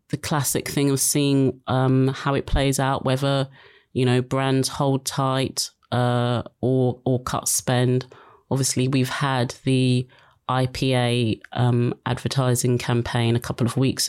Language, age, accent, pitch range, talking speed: English, 30-49, British, 120-140 Hz, 140 wpm